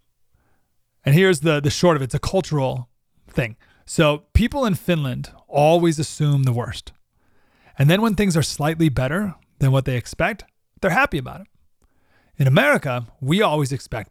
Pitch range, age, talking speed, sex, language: 130-190 Hz, 30-49, 165 wpm, male, English